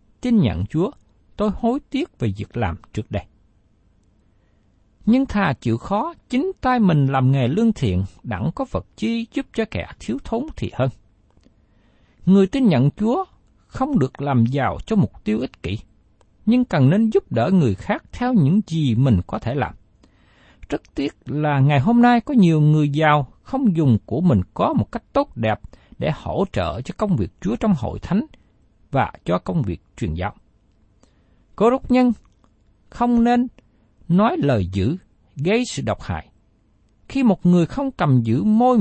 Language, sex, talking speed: Vietnamese, male, 175 wpm